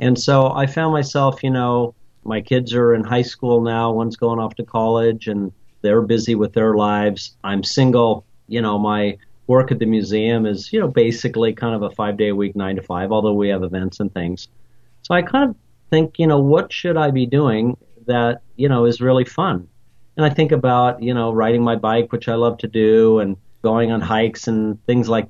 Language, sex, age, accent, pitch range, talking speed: English, male, 50-69, American, 110-130 Hz, 220 wpm